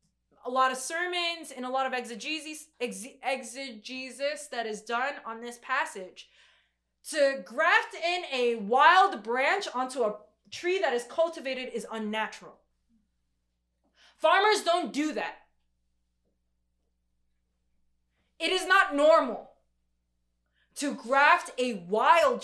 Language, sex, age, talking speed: English, female, 20-39, 110 wpm